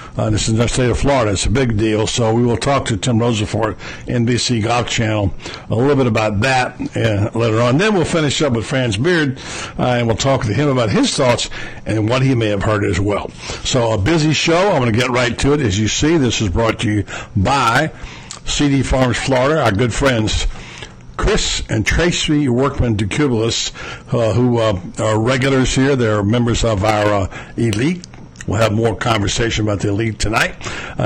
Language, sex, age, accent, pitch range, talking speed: English, male, 60-79, American, 110-130 Hz, 195 wpm